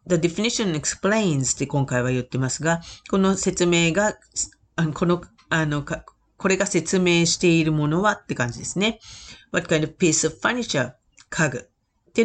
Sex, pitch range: female, 135-195 Hz